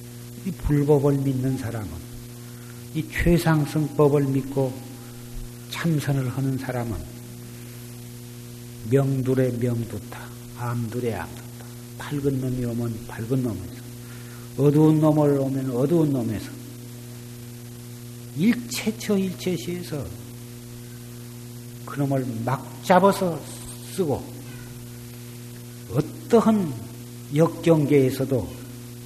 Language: Korean